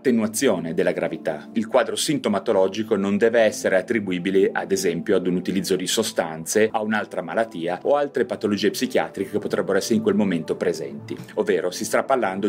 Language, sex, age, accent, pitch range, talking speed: Italian, male, 30-49, native, 105-170 Hz, 170 wpm